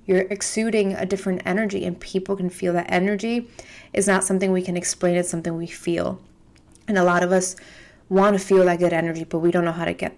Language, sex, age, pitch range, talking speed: English, female, 20-39, 175-195 Hz, 230 wpm